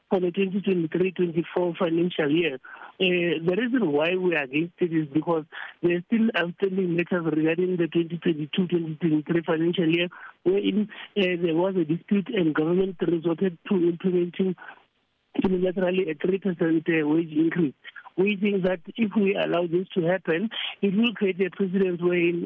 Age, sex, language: 60-79, male, English